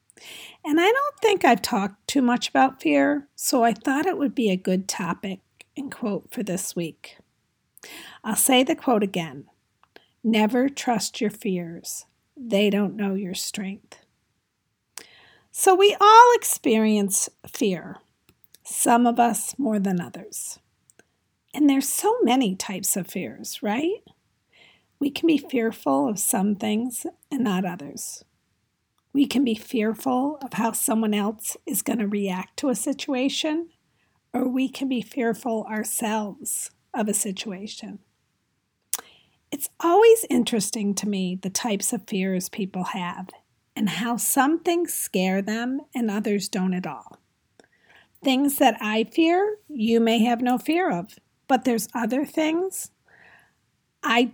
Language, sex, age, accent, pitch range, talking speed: English, female, 50-69, American, 205-275 Hz, 140 wpm